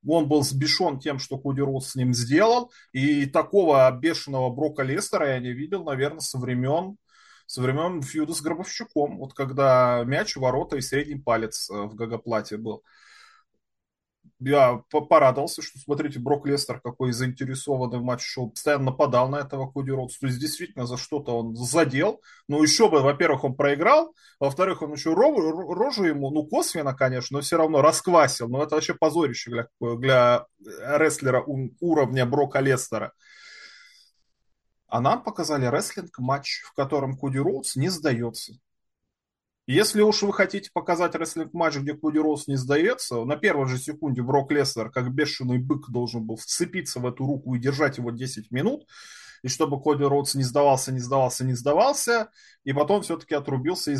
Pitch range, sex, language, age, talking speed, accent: 130-160 Hz, male, Russian, 20-39, 165 wpm, native